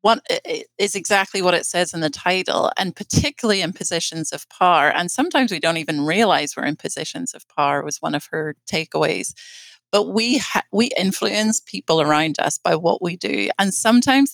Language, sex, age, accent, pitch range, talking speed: English, female, 30-49, American, 175-235 Hz, 195 wpm